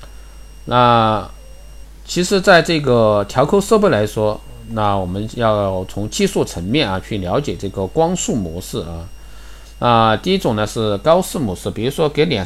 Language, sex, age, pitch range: Chinese, male, 50-69, 95-120 Hz